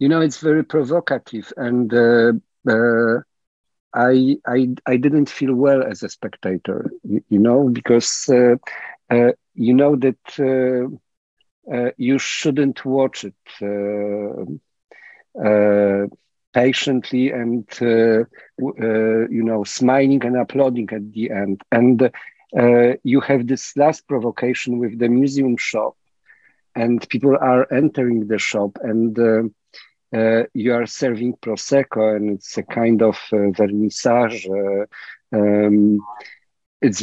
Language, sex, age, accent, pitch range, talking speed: Polish, male, 50-69, native, 110-135 Hz, 125 wpm